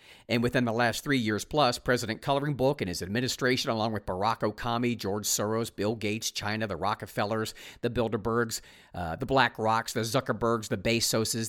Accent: American